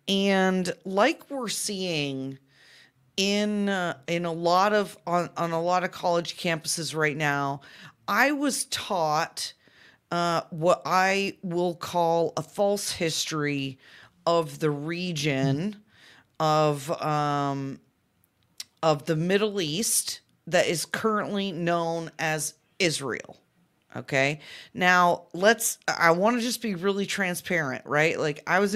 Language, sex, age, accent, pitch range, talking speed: English, female, 30-49, American, 155-195 Hz, 125 wpm